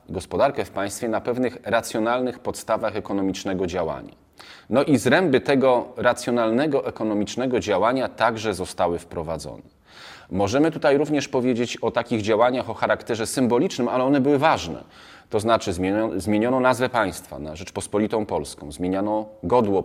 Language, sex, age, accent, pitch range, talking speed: Polish, male, 30-49, native, 95-120 Hz, 135 wpm